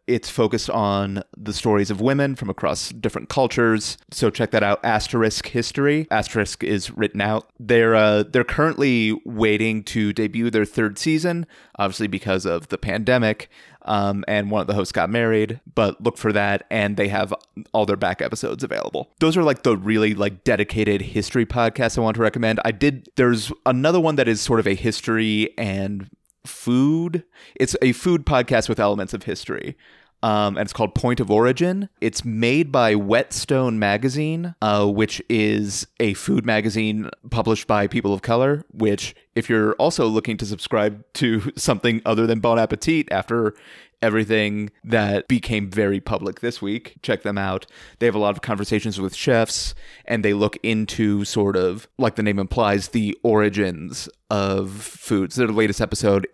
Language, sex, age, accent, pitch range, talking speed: English, male, 30-49, American, 105-120 Hz, 175 wpm